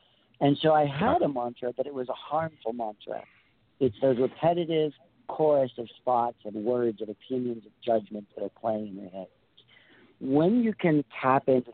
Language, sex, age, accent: English, male, 50-69, American